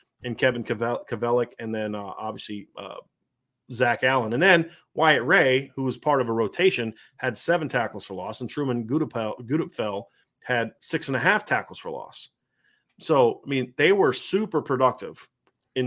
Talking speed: 170 wpm